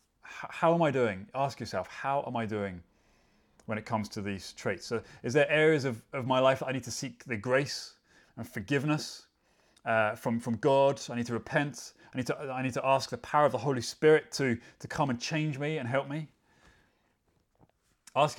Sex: male